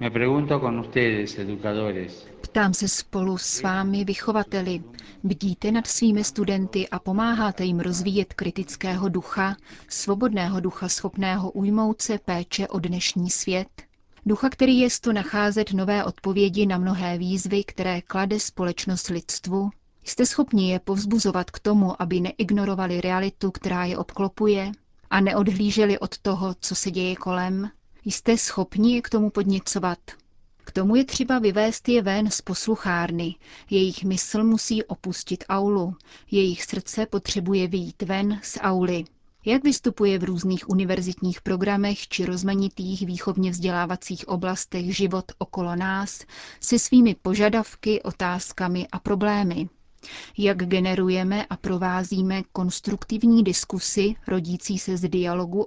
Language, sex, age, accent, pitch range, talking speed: Czech, female, 30-49, native, 180-205 Hz, 125 wpm